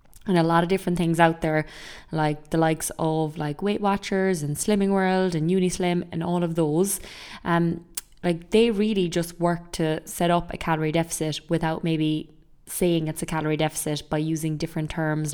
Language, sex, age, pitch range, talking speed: English, female, 20-39, 155-175 Hz, 185 wpm